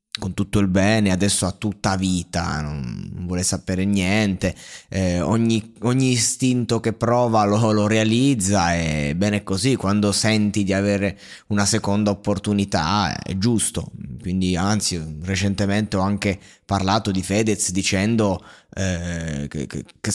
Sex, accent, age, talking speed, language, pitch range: male, native, 20-39, 130 wpm, Italian, 100-120 Hz